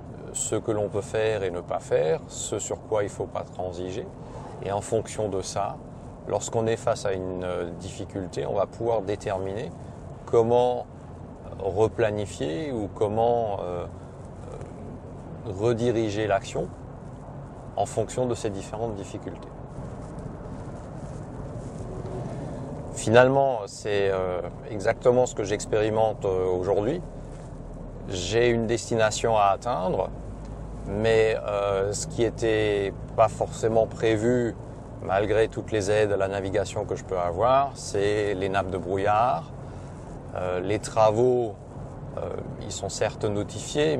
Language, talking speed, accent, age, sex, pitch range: French, 125 wpm, French, 30-49, male, 100-125 Hz